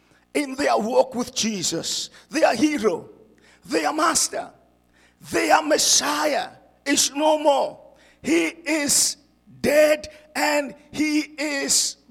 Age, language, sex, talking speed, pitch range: 50-69, English, male, 115 wpm, 245-310 Hz